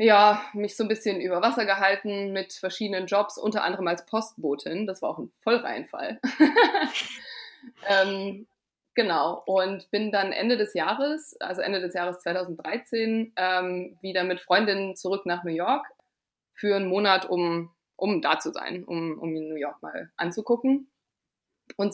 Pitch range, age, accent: 180-225 Hz, 20-39, German